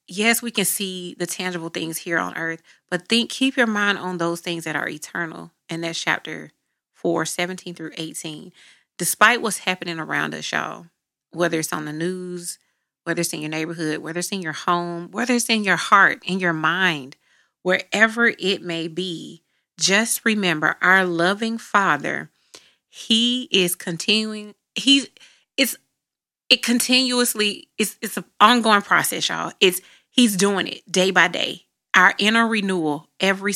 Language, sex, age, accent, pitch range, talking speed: English, female, 30-49, American, 170-210 Hz, 160 wpm